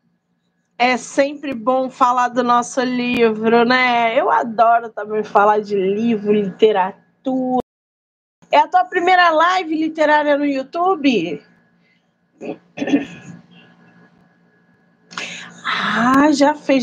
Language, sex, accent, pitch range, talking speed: Portuguese, female, Brazilian, 220-300 Hz, 95 wpm